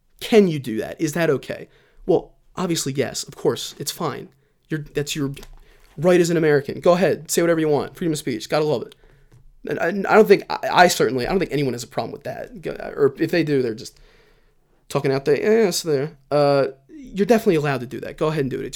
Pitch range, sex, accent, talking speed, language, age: 130-190 Hz, male, American, 235 wpm, English, 20-39